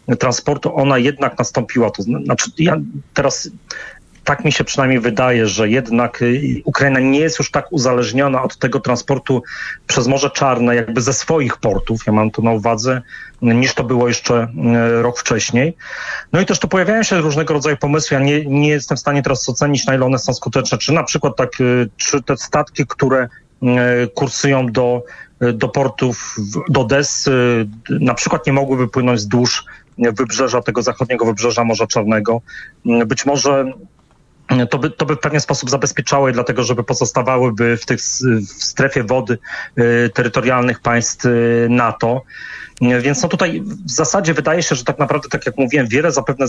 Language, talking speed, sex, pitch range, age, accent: Polish, 165 wpm, male, 120-140 Hz, 30-49, native